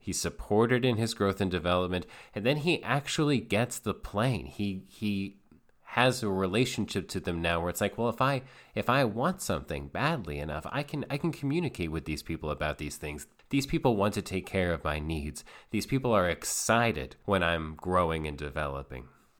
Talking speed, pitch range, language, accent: 195 wpm, 85-115 Hz, English, American